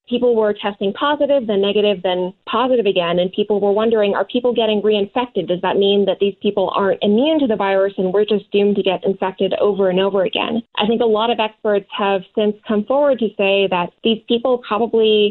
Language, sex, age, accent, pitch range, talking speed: English, female, 20-39, American, 195-235 Hz, 215 wpm